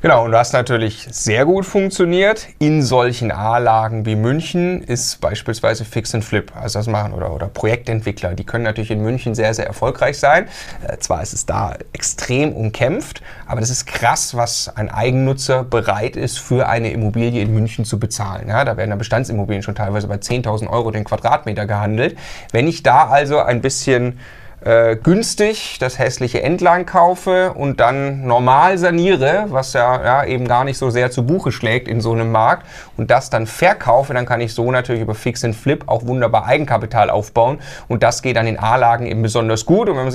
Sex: male